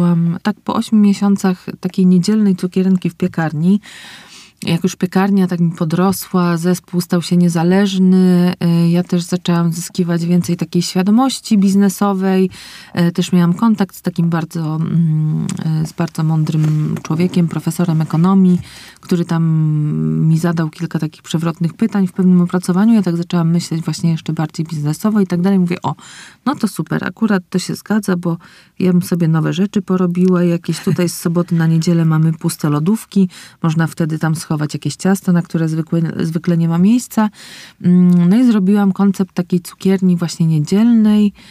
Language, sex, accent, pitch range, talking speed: Polish, female, native, 165-190 Hz, 155 wpm